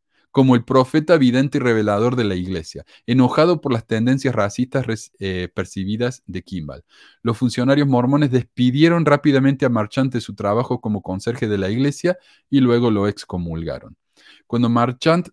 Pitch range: 105-145 Hz